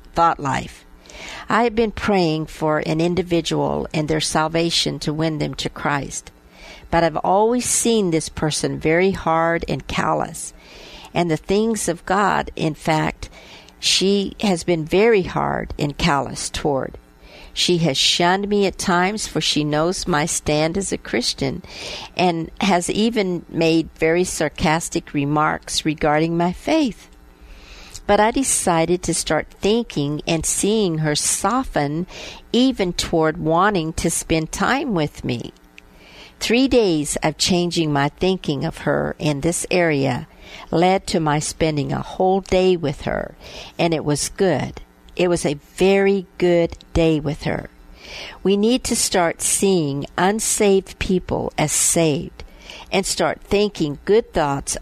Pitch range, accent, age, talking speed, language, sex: 150-190 Hz, American, 50-69, 140 wpm, English, female